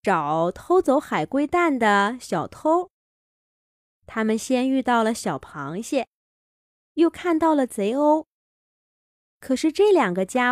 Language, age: Chinese, 20-39